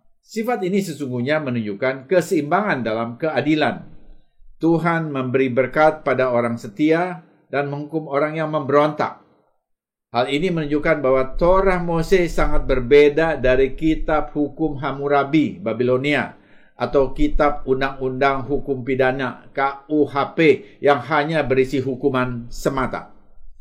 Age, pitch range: 50-69, 125-160 Hz